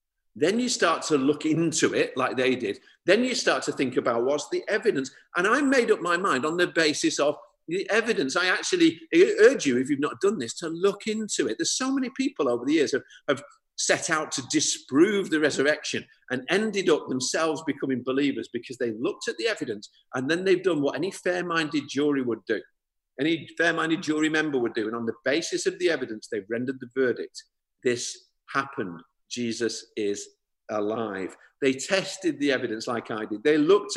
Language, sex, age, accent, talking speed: English, male, 50-69, British, 200 wpm